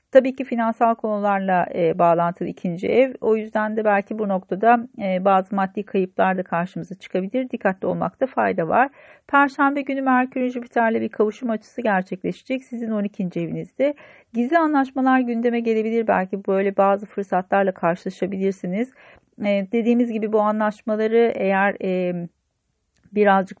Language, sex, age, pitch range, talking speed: Turkish, female, 40-59, 180-235 Hz, 135 wpm